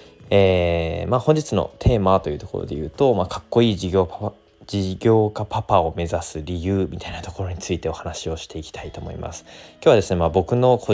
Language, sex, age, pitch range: Japanese, male, 20-39, 85-100 Hz